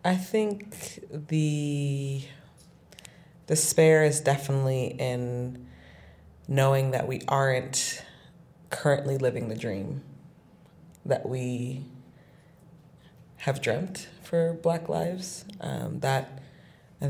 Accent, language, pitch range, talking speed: American, English, 130-150 Hz, 90 wpm